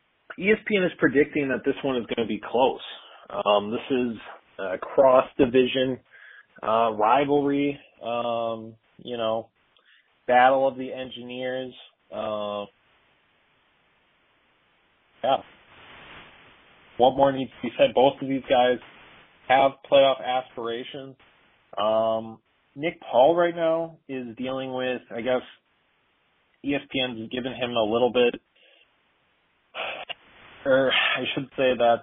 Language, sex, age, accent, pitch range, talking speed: English, male, 30-49, American, 110-130 Hz, 115 wpm